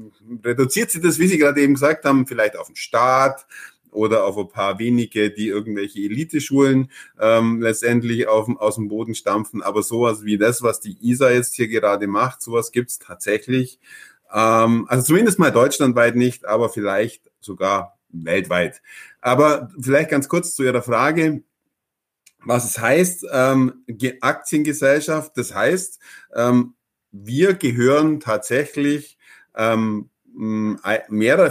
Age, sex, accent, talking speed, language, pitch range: 50-69, male, German, 140 wpm, German, 115-145 Hz